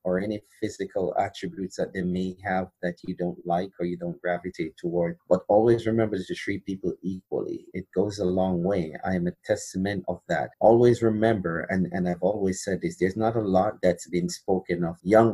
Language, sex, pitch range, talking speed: English, male, 90-110 Hz, 205 wpm